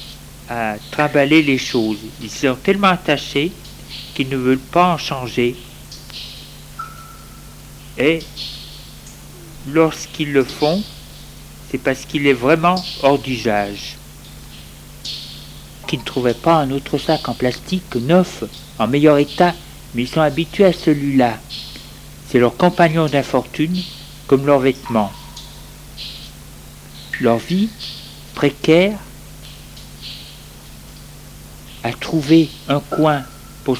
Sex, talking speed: male, 105 wpm